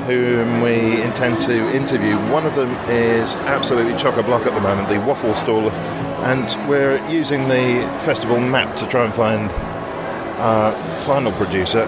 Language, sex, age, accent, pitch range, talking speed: English, male, 40-59, British, 105-135 Hz, 150 wpm